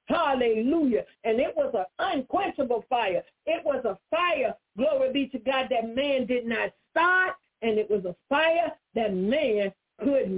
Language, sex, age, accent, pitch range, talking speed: English, female, 50-69, American, 220-290 Hz, 160 wpm